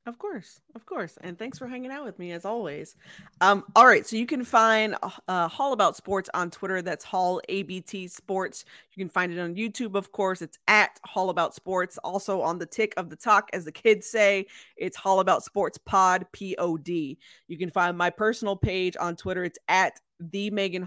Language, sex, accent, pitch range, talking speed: English, female, American, 175-215 Hz, 205 wpm